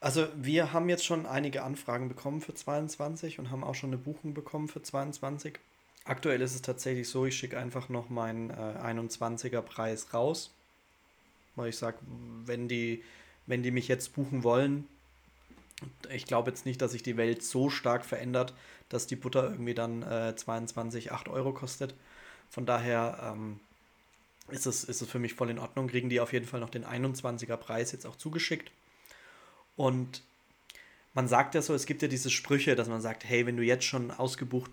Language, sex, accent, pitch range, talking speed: German, male, German, 120-140 Hz, 180 wpm